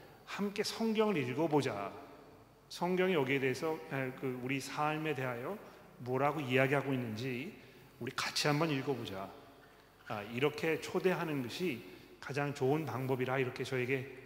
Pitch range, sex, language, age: 125-150 Hz, male, Korean, 40-59